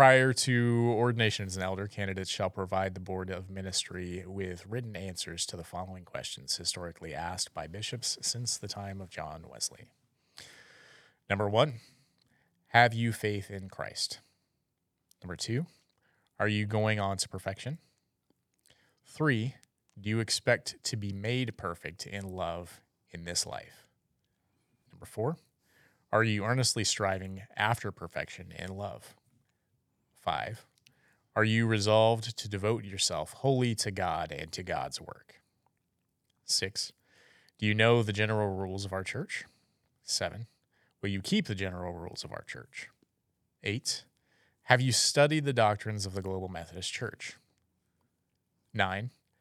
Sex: male